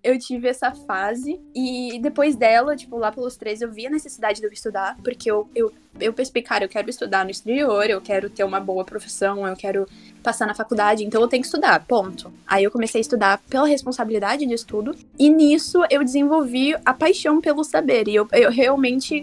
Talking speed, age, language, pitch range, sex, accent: 205 wpm, 10-29, Portuguese, 210-265 Hz, female, Brazilian